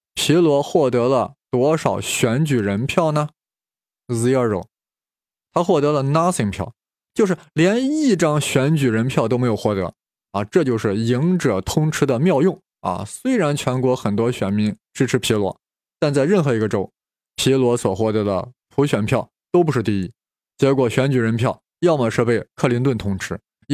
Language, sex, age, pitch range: Chinese, male, 20-39, 115-160 Hz